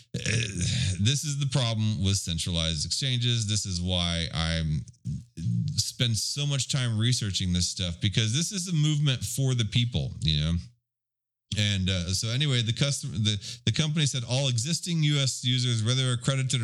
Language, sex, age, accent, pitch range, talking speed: English, male, 30-49, American, 105-135 Hz, 160 wpm